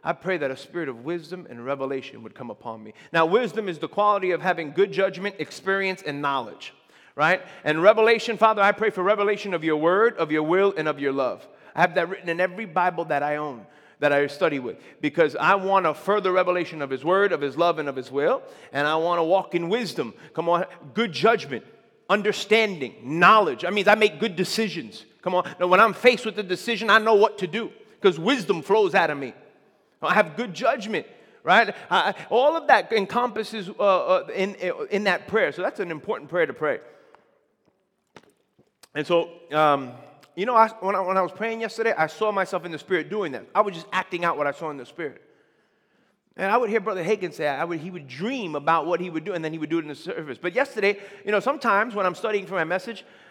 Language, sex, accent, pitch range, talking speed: English, male, American, 160-215 Hz, 230 wpm